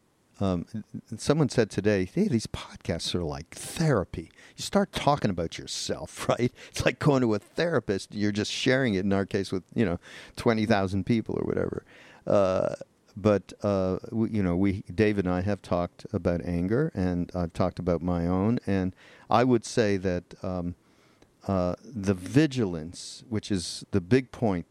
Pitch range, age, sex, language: 90-110 Hz, 50-69, male, English